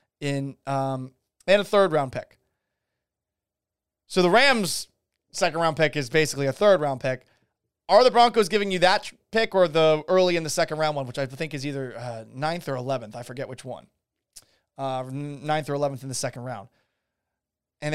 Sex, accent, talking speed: male, American, 175 wpm